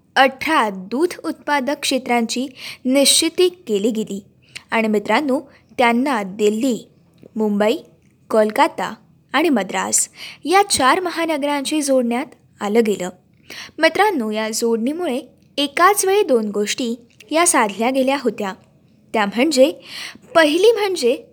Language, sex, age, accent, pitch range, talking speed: Marathi, female, 20-39, native, 225-320 Hz, 100 wpm